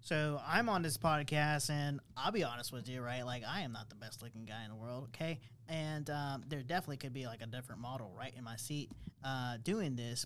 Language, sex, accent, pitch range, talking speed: English, male, American, 125-170 Hz, 235 wpm